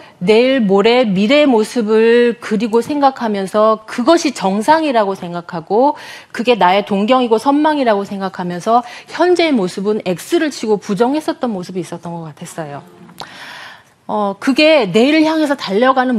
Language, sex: Korean, female